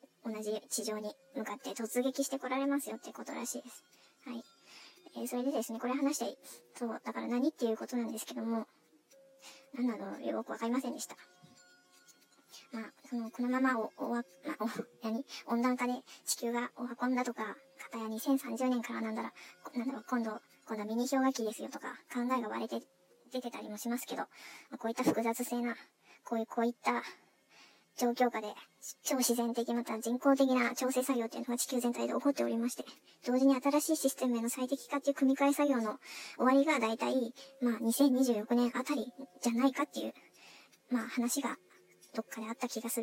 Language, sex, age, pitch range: Japanese, male, 40-59, 225-265 Hz